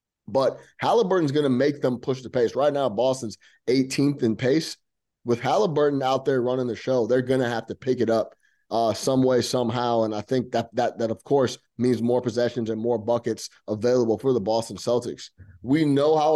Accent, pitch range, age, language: American, 115-130 Hz, 30-49, English